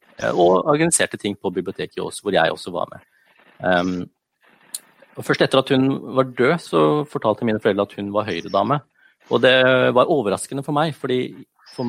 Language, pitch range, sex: English, 105-130 Hz, male